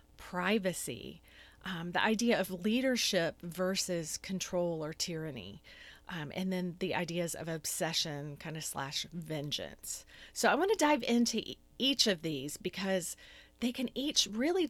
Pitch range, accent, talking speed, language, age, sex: 170-220 Hz, American, 145 wpm, English, 40-59, female